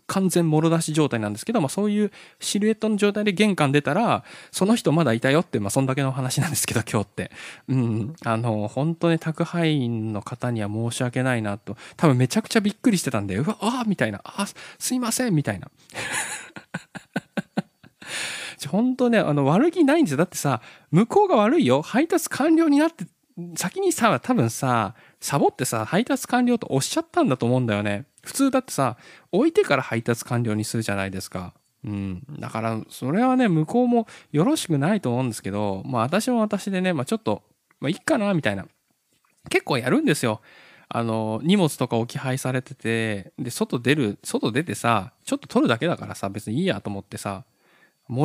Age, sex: 20-39, male